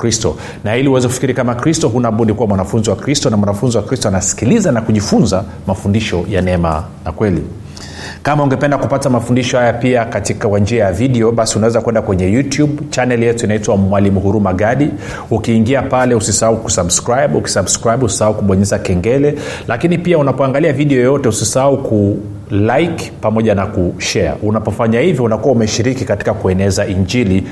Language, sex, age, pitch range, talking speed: Swahili, male, 30-49, 105-140 Hz, 155 wpm